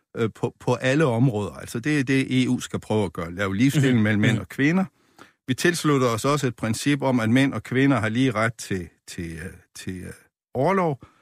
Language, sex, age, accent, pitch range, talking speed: Danish, male, 60-79, native, 110-145 Hz, 185 wpm